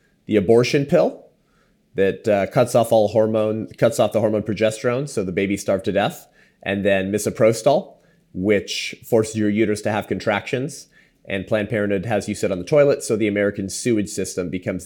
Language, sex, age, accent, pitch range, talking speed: English, male, 30-49, American, 90-115 Hz, 180 wpm